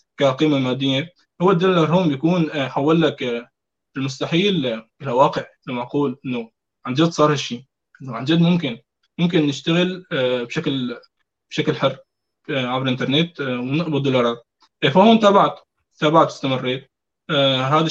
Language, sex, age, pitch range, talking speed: Arabic, male, 20-39, 125-155 Hz, 120 wpm